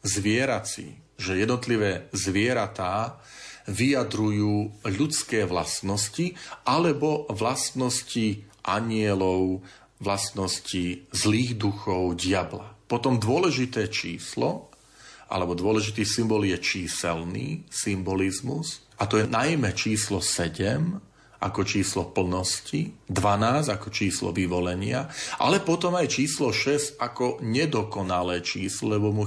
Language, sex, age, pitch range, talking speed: Slovak, male, 40-59, 95-125 Hz, 95 wpm